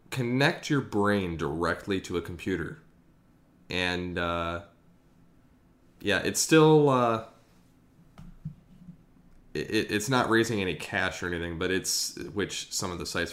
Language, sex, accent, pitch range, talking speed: English, male, American, 90-115 Hz, 125 wpm